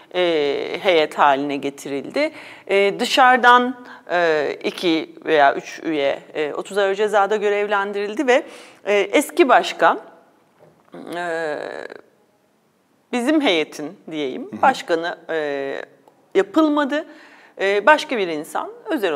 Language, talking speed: Turkish, 95 wpm